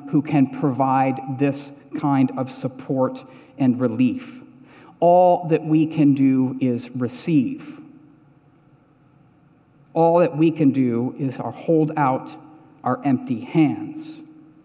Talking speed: 110 wpm